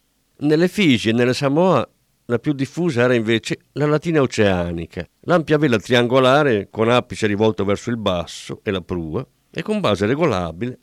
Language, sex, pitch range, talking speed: Italian, male, 100-150 Hz, 160 wpm